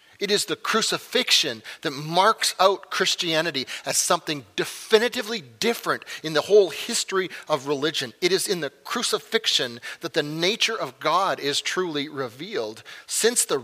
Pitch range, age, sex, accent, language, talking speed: 130-180 Hz, 40-59, male, American, English, 145 wpm